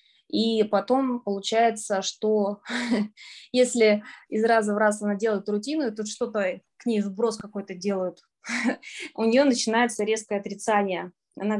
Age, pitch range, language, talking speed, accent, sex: 20-39, 200-225 Hz, Russian, 130 wpm, native, female